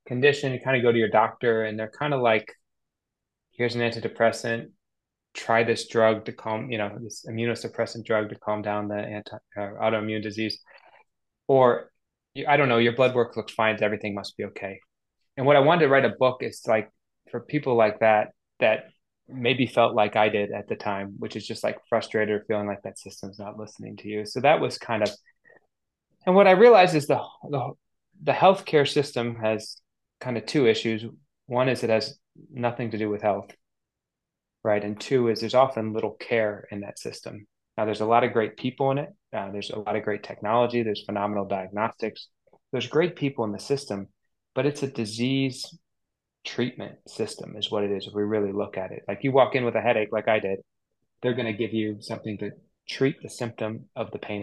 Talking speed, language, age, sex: 205 wpm, English, 20-39, male